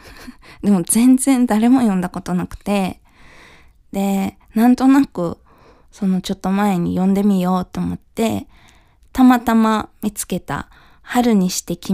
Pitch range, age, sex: 175-250 Hz, 20-39, female